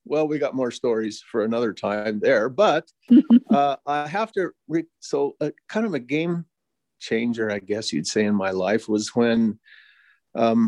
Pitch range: 110-185 Hz